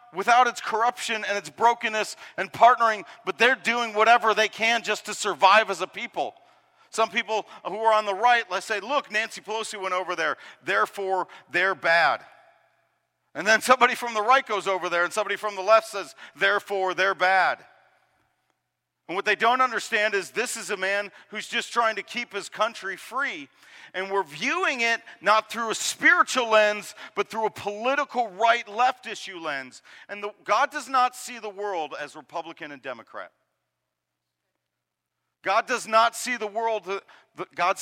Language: English